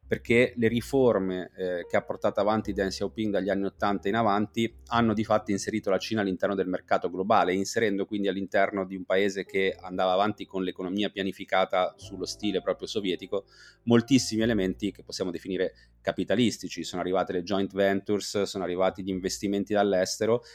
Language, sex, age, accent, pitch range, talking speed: Italian, male, 30-49, native, 95-115 Hz, 165 wpm